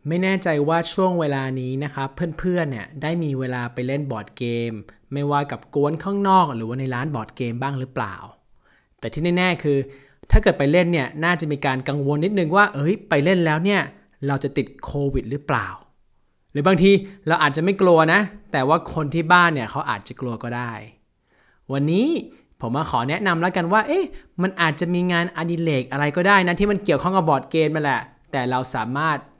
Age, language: 20-39, Thai